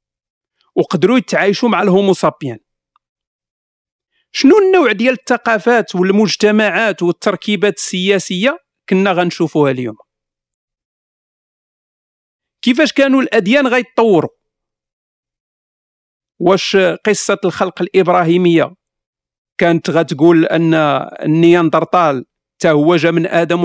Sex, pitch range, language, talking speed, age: male, 165-205 Hz, Arabic, 80 wpm, 50-69